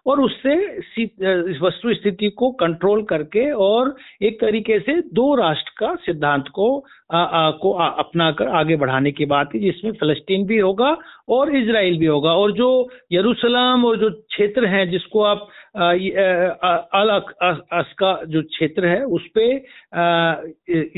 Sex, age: male, 60-79